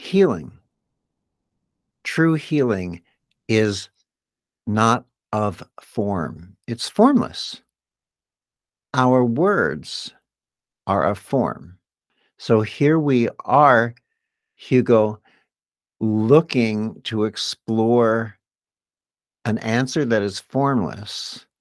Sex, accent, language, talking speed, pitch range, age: male, American, English, 75 wpm, 95-125 Hz, 60-79